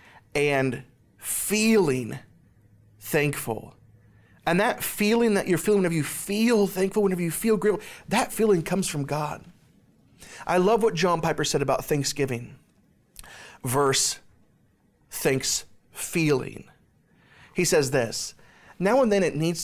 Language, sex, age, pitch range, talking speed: English, male, 40-59, 135-200 Hz, 125 wpm